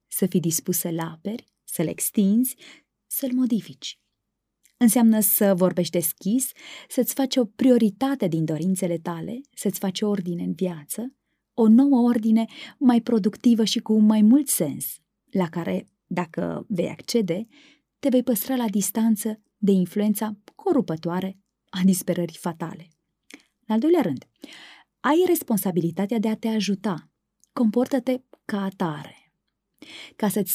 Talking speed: 130 wpm